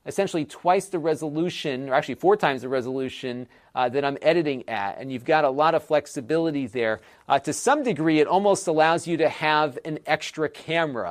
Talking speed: 195 wpm